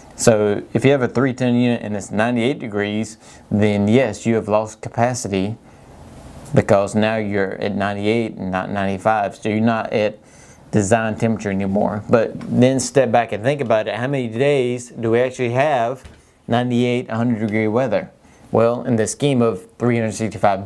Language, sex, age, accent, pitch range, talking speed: English, male, 30-49, American, 105-125 Hz, 165 wpm